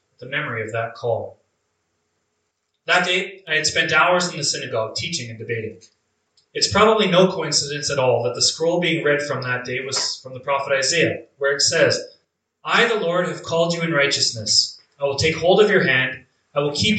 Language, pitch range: English, 115-165 Hz